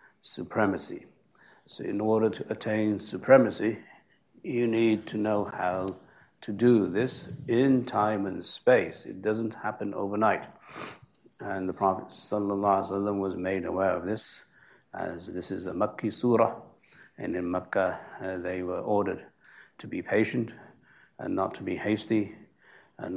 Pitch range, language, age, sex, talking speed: 95-110 Hz, English, 60-79, male, 140 wpm